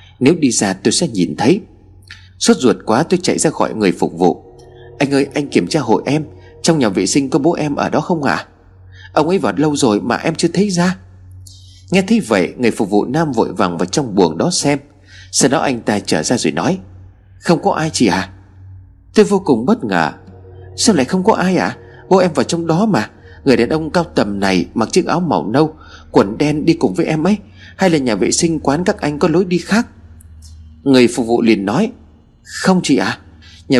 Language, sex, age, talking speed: Vietnamese, male, 30-49, 235 wpm